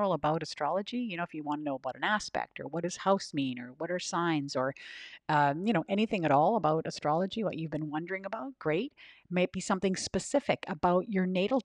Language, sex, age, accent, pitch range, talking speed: English, female, 50-69, American, 150-195 Hz, 215 wpm